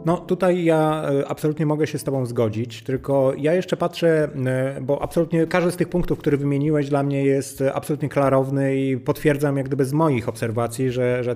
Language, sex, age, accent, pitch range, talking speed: Polish, male, 30-49, native, 125-150 Hz, 185 wpm